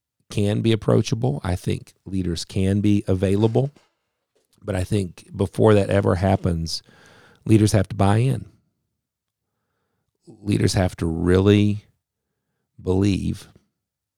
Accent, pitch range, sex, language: American, 90-110 Hz, male, English